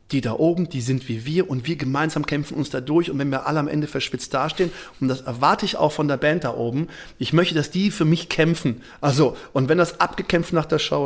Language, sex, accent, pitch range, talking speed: German, male, German, 135-170 Hz, 255 wpm